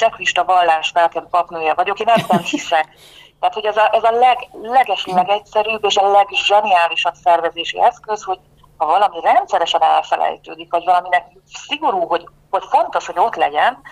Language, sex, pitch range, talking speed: Hungarian, female, 170-215 Hz, 155 wpm